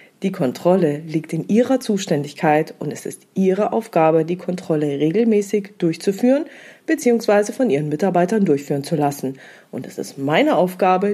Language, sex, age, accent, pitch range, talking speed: German, female, 40-59, German, 155-210 Hz, 145 wpm